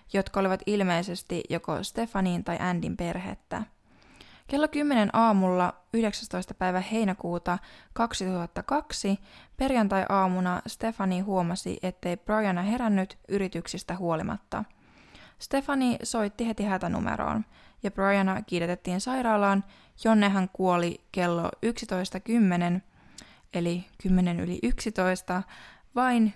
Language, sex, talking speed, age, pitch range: Finnish, female, 95 wpm, 20-39, 175-220 Hz